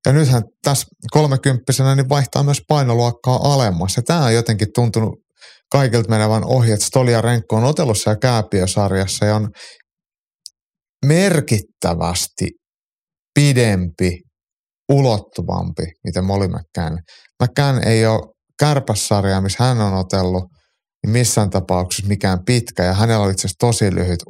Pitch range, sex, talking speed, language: 95-120 Hz, male, 120 wpm, Finnish